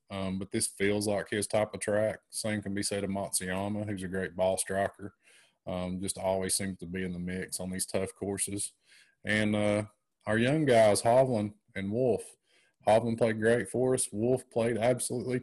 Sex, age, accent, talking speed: male, 20-39, American, 190 wpm